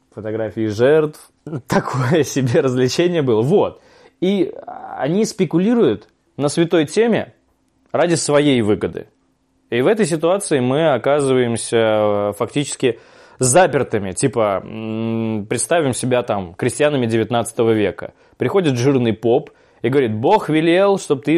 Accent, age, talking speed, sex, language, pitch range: native, 20-39, 110 wpm, male, Russian, 120-165 Hz